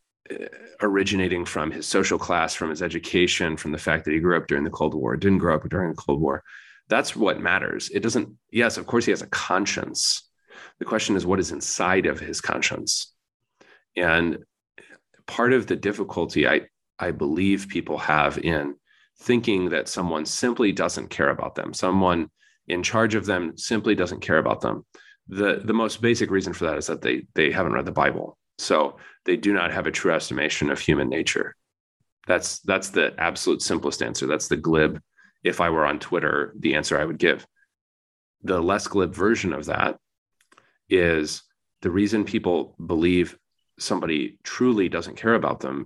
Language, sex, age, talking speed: English, male, 30-49, 180 wpm